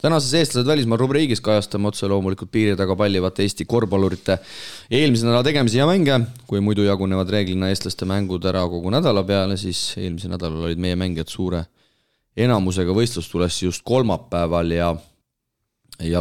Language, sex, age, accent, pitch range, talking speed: English, male, 30-49, Finnish, 85-105 Hz, 150 wpm